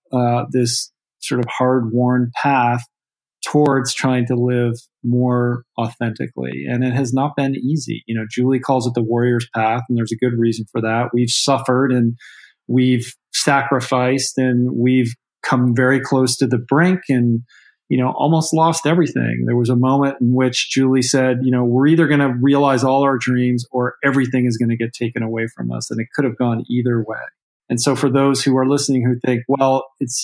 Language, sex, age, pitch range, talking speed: English, male, 40-59, 120-135 Hz, 195 wpm